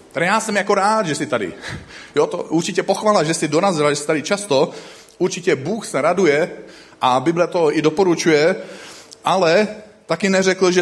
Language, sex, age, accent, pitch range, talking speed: Czech, male, 40-59, native, 125-175 Hz, 175 wpm